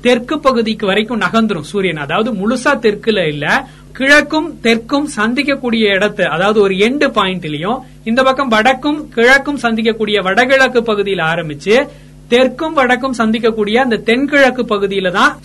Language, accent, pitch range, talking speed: Tamil, native, 195-255 Hz, 120 wpm